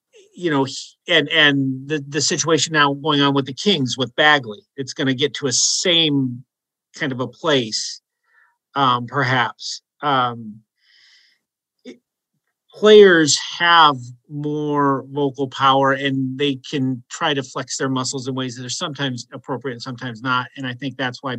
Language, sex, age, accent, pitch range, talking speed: English, male, 50-69, American, 120-140 Hz, 160 wpm